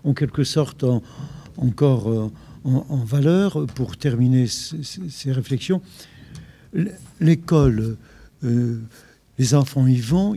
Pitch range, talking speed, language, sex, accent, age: 135-175 Hz, 115 wpm, French, male, French, 60-79